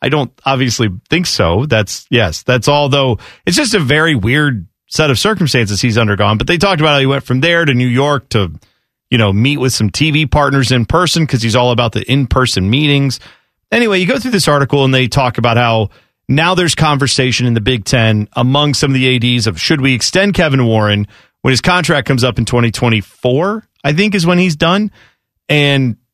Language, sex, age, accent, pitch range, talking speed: English, male, 30-49, American, 120-160 Hz, 210 wpm